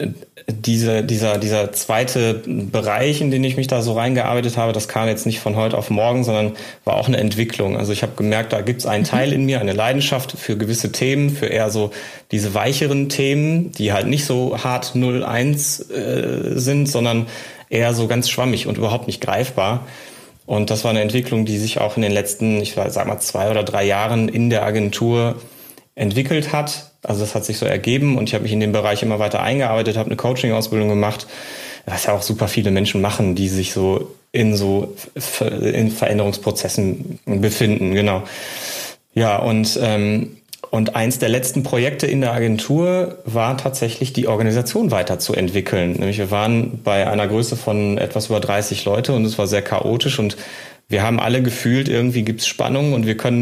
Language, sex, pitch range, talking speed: German, male, 105-125 Hz, 190 wpm